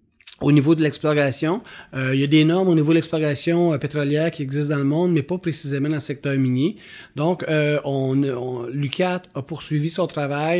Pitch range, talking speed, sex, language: 135-160 Hz, 210 wpm, male, French